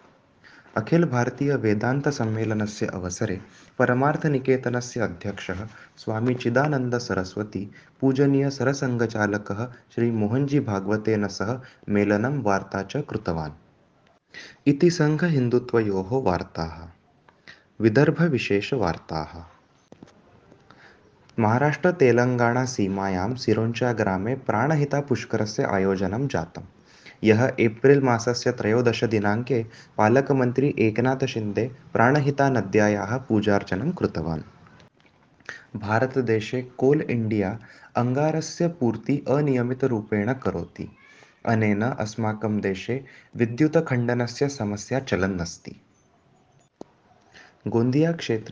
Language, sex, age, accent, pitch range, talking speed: Hindi, male, 20-39, native, 105-130 Hz, 55 wpm